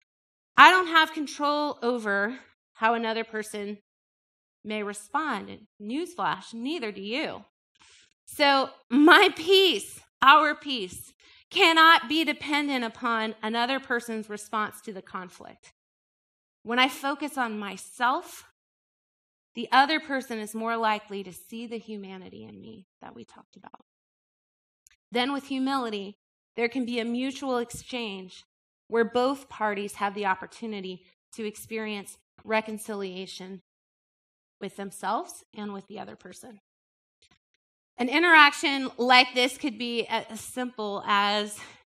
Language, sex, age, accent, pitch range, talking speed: English, female, 30-49, American, 210-275 Hz, 120 wpm